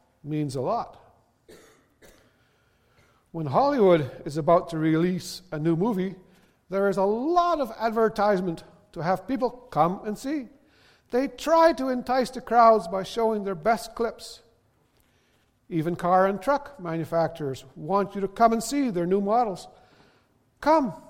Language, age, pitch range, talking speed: English, 50-69, 160-230 Hz, 140 wpm